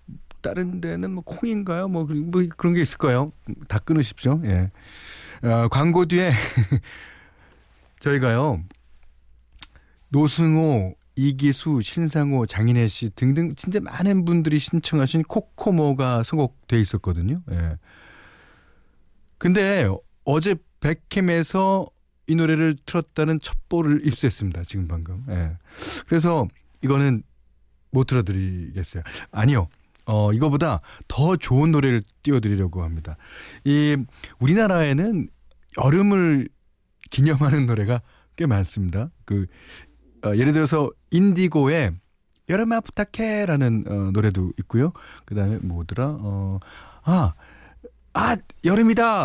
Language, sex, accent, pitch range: Korean, male, native, 95-160 Hz